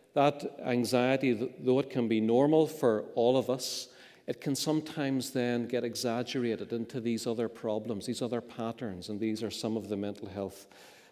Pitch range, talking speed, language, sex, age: 105-125 Hz, 175 wpm, English, male, 40-59